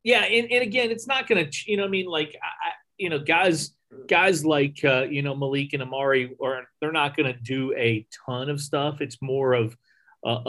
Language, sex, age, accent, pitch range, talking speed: English, male, 30-49, American, 125-150 Hz, 225 wpm